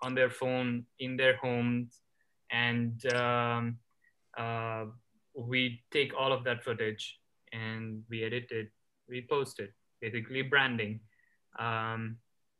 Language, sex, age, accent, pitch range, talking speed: English, male, 20-39, Indian, 115-130 Hz, 120 wpm